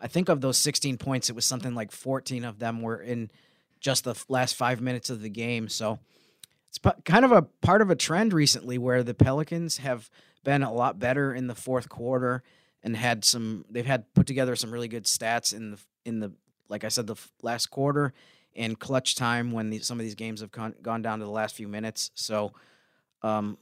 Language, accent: English, American